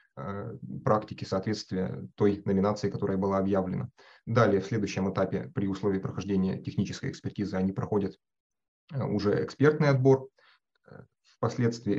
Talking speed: 110 wpm